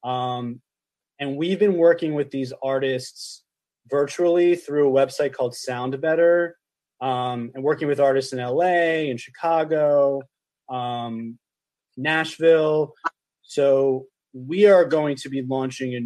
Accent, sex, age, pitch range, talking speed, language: American, male, 20-39, 130-160 Hz, 125 wpm, English